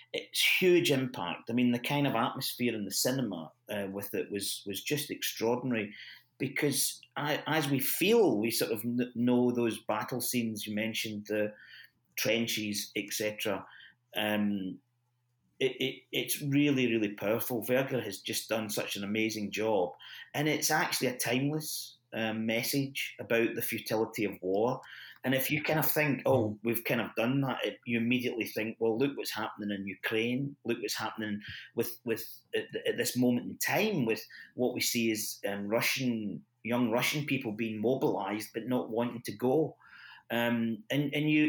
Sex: male